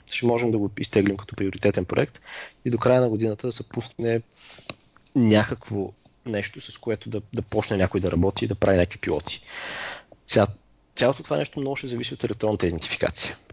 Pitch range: 95-115 Hz